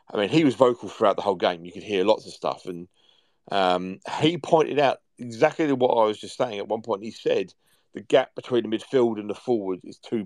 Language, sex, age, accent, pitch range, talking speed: English, male, 40-59, British, 105-135 Hz, 240 wpm